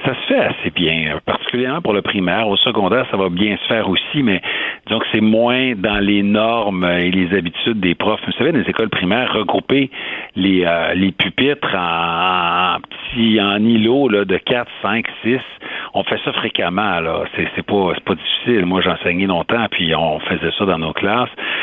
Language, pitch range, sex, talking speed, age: French, 90-125 Hz, male, 195 wpm, 60-79